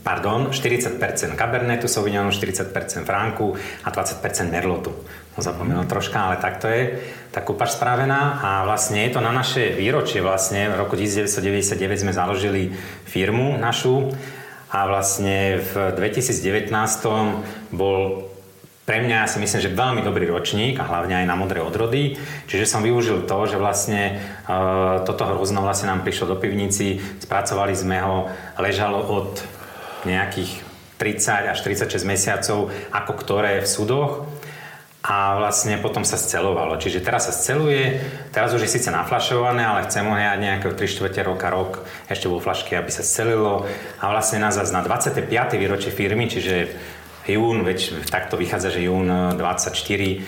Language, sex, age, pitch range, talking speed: Slovak, male, 40-59, 95-110 Hz, 145 wpm